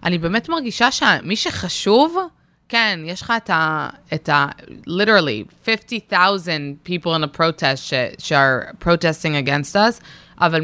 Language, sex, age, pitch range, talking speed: Hebrew, female, 20-39, 145-180 Hz, 145 wpm